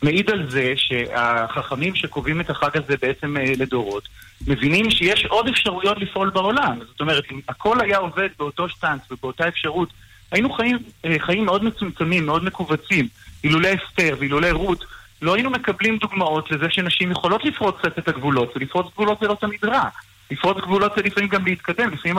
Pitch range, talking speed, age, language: 140-195 Hz, 160 wpm, 30-49, Hebrew